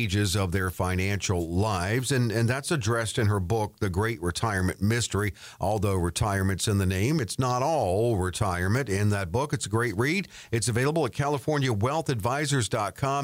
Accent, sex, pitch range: American, male, 100-135 Hz